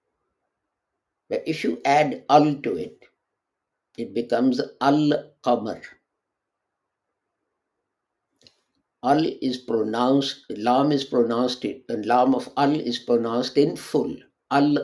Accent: Indian